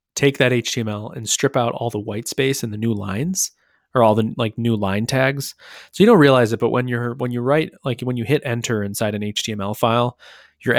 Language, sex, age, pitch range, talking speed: English, male, 20-39, 105-125 Hz, 235 wpm